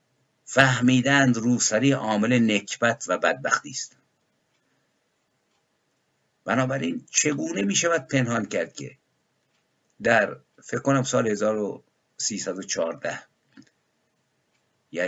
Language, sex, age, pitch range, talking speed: Persian, male, 50-69, 110-135 Hz, 75 wpm